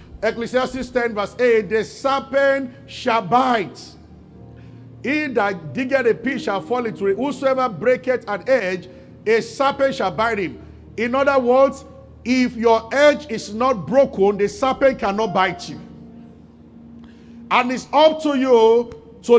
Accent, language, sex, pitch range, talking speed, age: Nigerian, English, male, 220-275 Hz, 140 wpm, 50-69